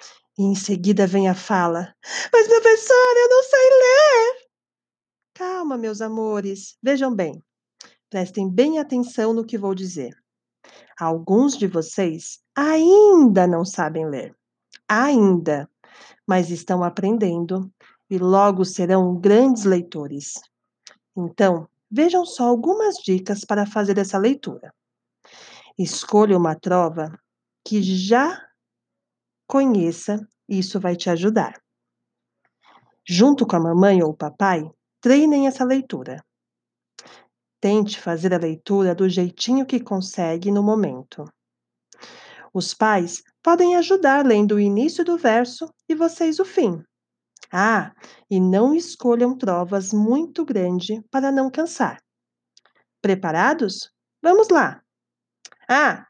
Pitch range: 180-265 Hz